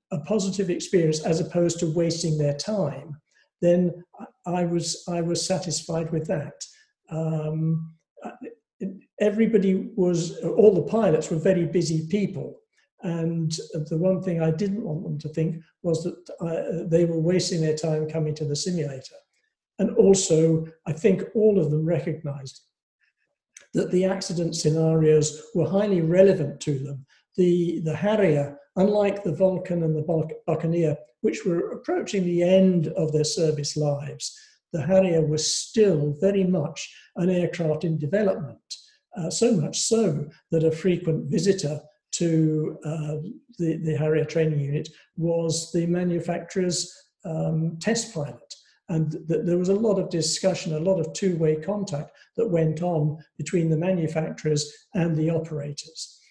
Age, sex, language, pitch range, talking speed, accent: 60-79, male, English, 155-190 Hz, 145 wpm, British